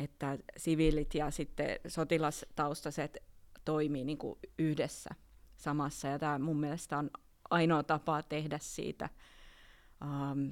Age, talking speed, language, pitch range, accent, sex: 30-49, 105 wpm, Finnish, 145-165 Hz, native, female